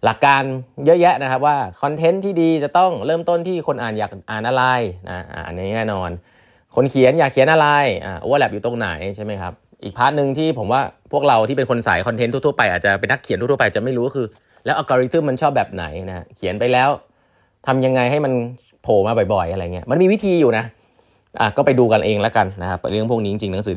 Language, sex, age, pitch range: Thai, male, 20-39, 100-140 Hz